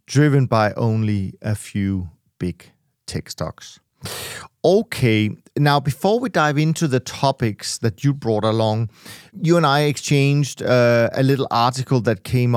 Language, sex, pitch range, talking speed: English, male, 115-140 Hz, 145 wpm